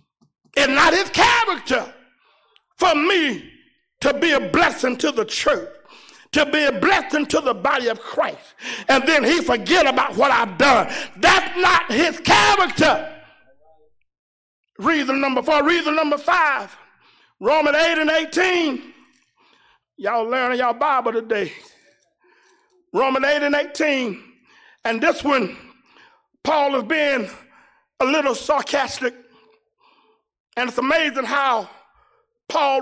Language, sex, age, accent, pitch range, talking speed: English, male, 50-69, American, 245-320 Hz, 125 wpm